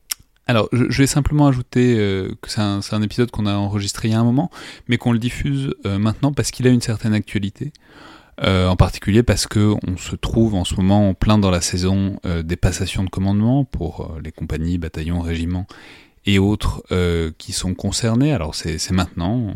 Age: 20-39